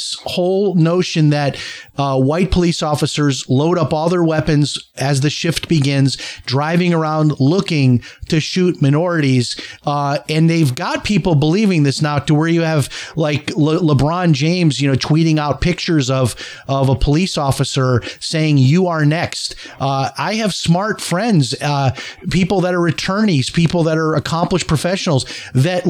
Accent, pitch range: American, 145-180 Hz